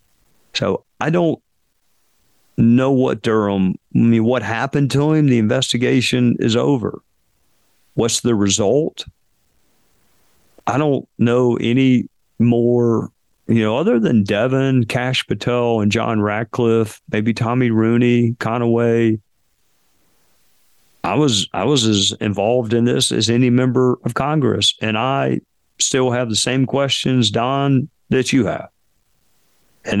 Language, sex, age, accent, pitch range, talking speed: English, male, 50-69, American, 110-130 Hz, 125 wpm